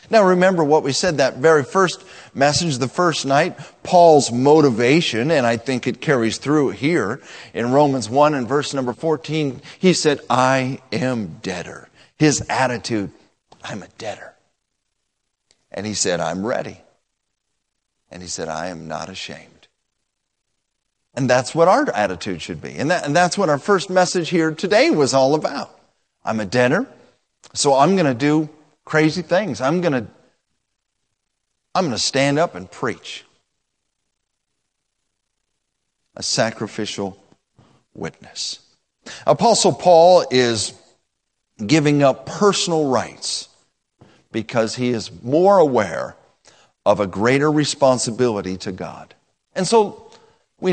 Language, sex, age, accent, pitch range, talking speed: English, male, 40-59, American, 125-170 Hz, 135 wpm